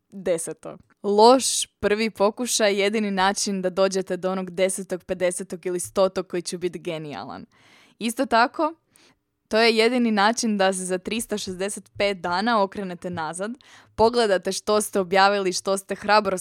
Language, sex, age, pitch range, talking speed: Croatian, female, 20-39, 185-210 Hz, 140 wpm